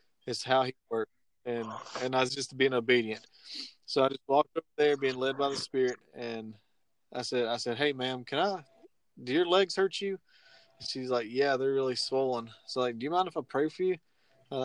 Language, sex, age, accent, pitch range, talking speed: English, male, 20-39, American, 120-140 Hz, 225 wpm